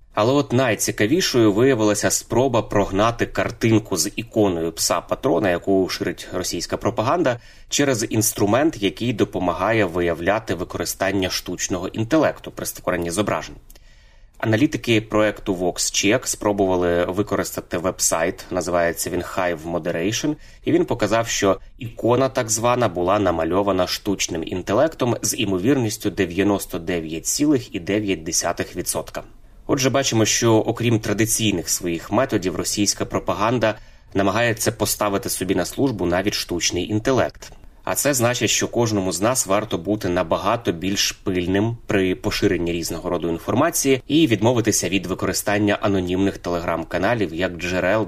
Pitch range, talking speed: 90-110 Hz, 115 wpm